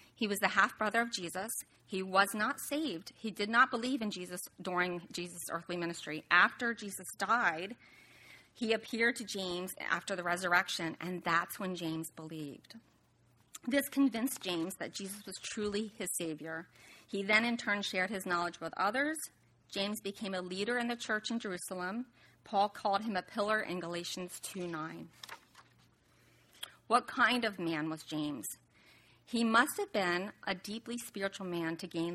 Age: 30-49